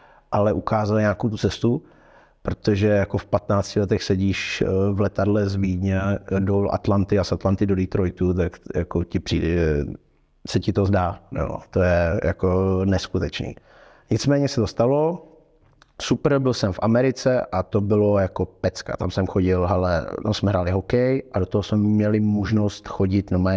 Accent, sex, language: native, male, Czech